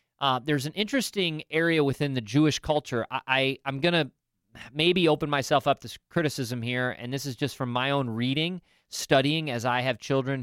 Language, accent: English, American